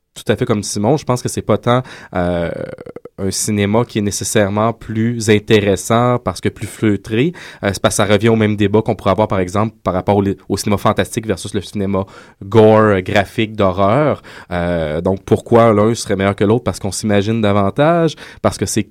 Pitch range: 95-115 Hz